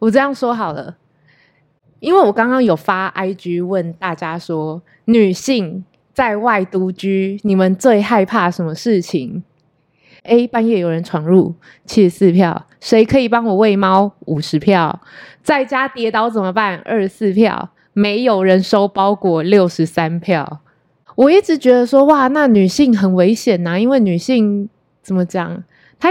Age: 20-39